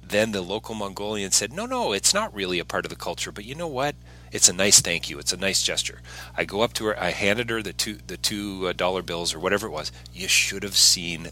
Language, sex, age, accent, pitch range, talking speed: English, male, 40-59, American, 80-115 Hz, 265 wpm